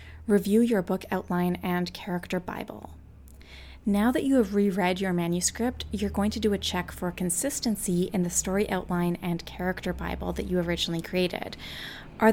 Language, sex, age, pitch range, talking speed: English, female, 20-39, 180-215 Hz, 165 wpm